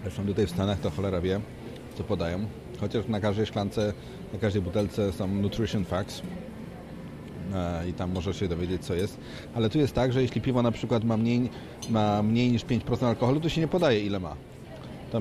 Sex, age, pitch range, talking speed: male, 40-59, 105-130 Hz, 190 wpm